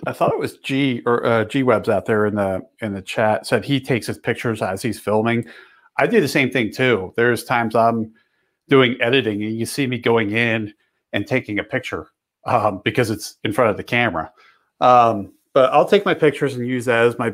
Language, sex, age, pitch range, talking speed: English, male, 40-59, 110-130 Hz, 220 wpm